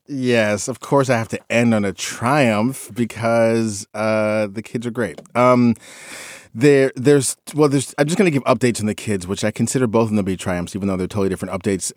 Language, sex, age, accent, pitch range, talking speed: English, male, 30-49, American, 95-120 Hz, 225 wpm